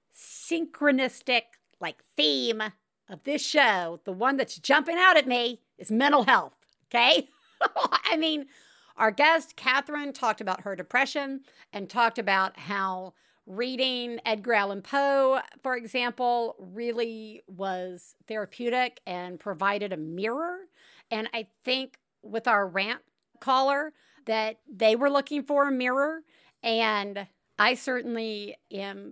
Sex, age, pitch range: female, 50-69, 200-265 Hz